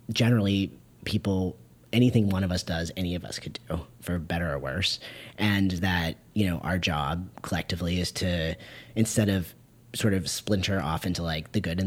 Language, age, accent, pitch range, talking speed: English, 30-49, American, 85-105 Hz, 180 wpm